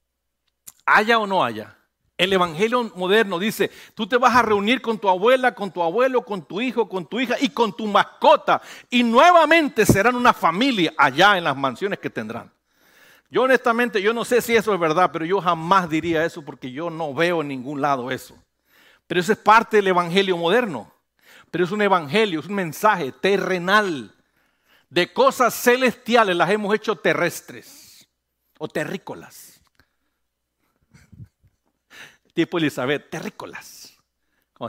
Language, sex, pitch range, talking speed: English, male, 130-205 Hz, 155 wpm